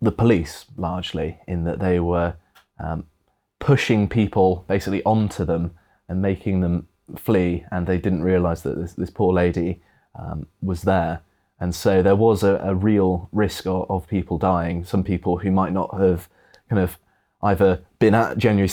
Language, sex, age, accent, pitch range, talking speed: English, male, 20-39, British, 90-100 Hz, 170 wpm